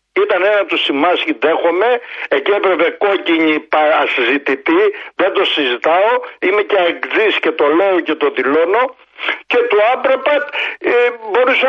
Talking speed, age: 135 wpm, 60-79